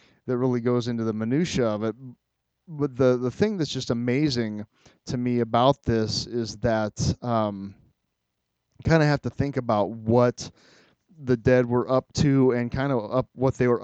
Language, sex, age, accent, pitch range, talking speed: English, male, 30-49, American, 110-135 Hz, 180 wpm